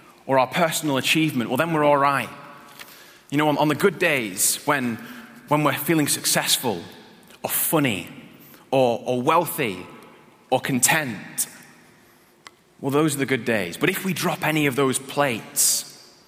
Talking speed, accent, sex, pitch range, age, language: 150 wpm, British, male, 120-155 Hz, 20-39, English